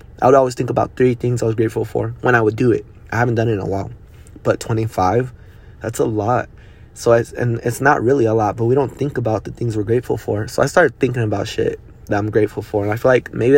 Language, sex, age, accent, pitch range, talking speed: English, male, 20-39, American, 110-120 Hz, 270 wpm